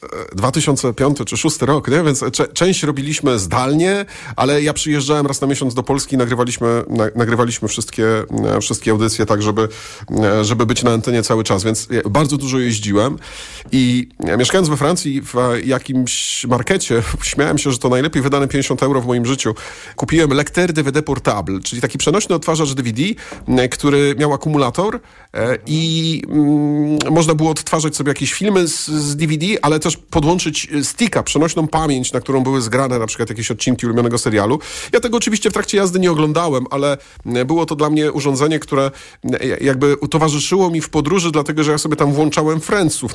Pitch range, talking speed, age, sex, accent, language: 120-155 Hz, 165 wpm, 40-59, male, native, Polish